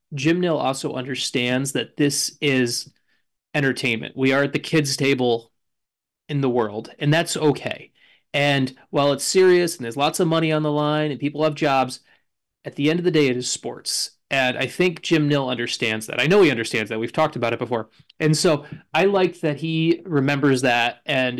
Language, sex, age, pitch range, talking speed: English, male, 30-49, 120-150 Hz, 200 wpm